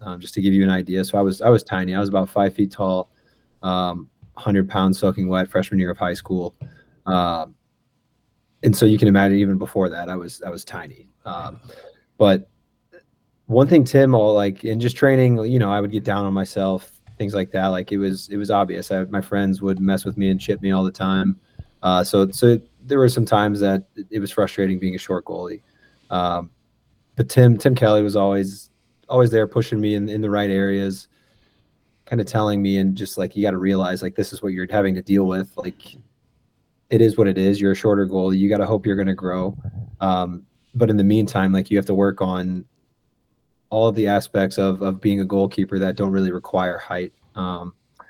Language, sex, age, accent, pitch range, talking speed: English, male, 30-49, American, 95-110 Hz, 220 wpm